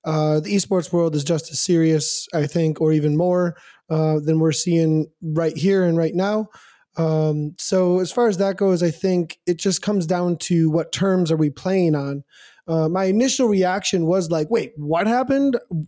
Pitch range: 165-205 Hz